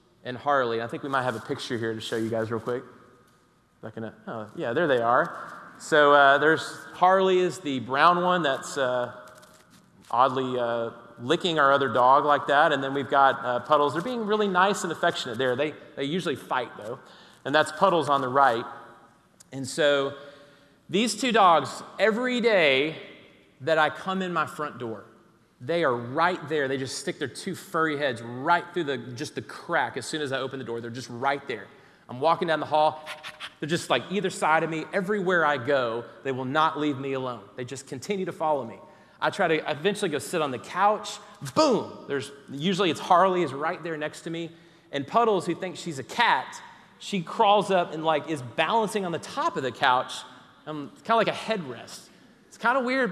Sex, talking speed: male, 210 wpm